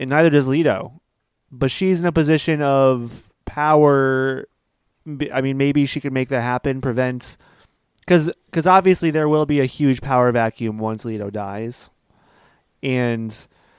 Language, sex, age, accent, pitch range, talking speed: English, male, 30-49, American, 115-145 Hz, 145 wpm